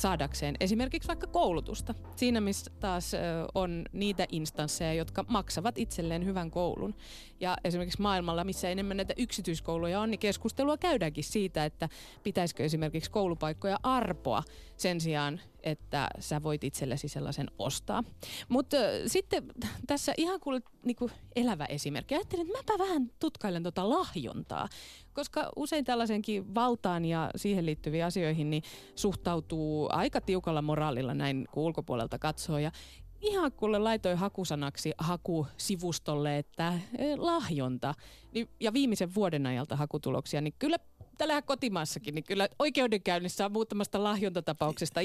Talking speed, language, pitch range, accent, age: 130 wpm, Finnish, 160-240 Hz, native, 30-49